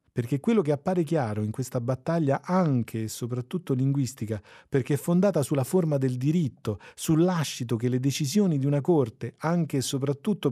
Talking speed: 165 wpm